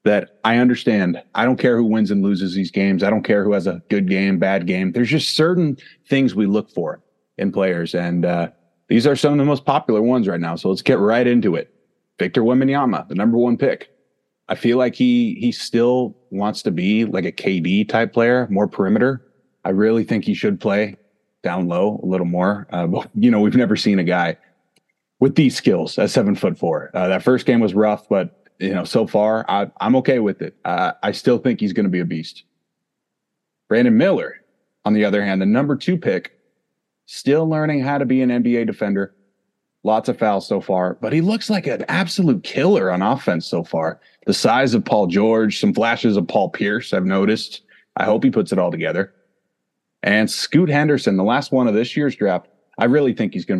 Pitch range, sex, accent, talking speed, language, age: 95-135 Hz, male, American, 215 wpm, English, 30-49